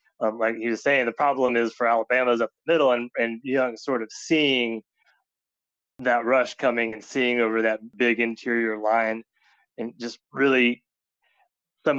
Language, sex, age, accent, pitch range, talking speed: English, male, 20-39, American, 110-120 Hz, 170 wpm